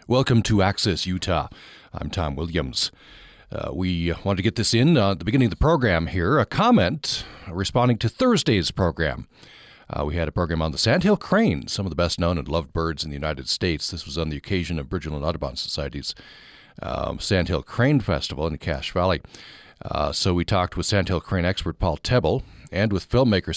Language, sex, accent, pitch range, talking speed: English, male, American, 80-110 Hz, 200 wpm